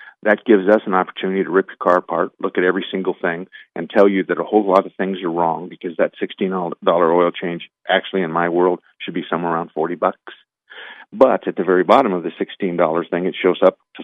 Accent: American